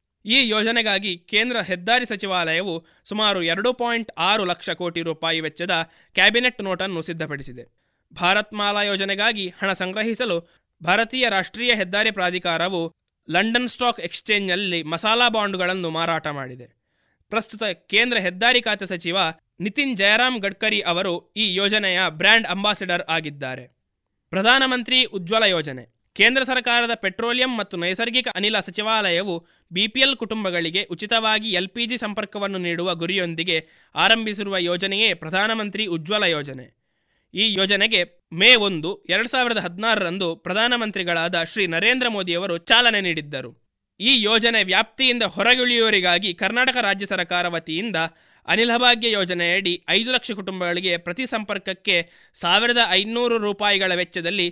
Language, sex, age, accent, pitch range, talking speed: Kannada, male, 20-39, native, 175-225 Hz, 110 wpm